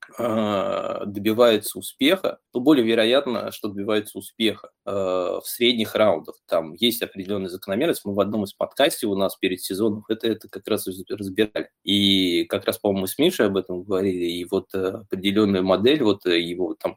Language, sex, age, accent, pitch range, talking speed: Russian, male, 20-39, native, 95-110 Hz, 170 wpm